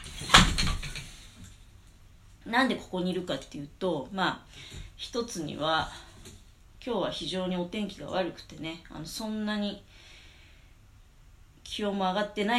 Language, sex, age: Japanese, female, 40-59